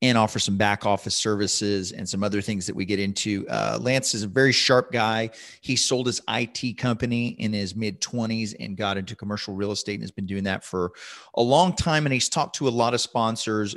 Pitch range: 105-125 Hz